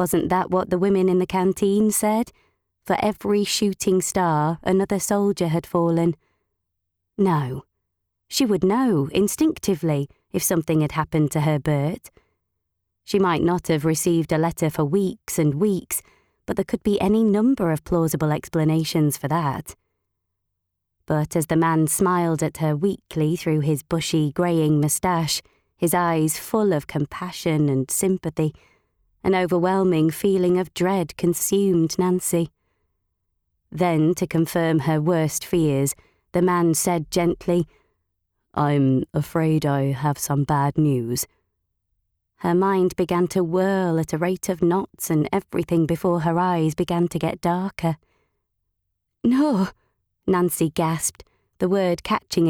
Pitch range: 150-180 Hz